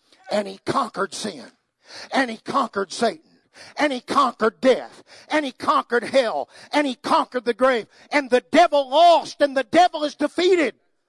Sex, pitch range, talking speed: male, 240-320 Hz, 160 wpm